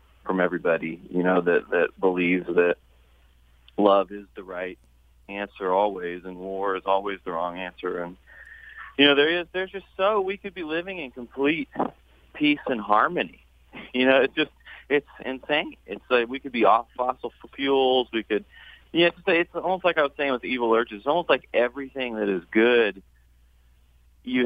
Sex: male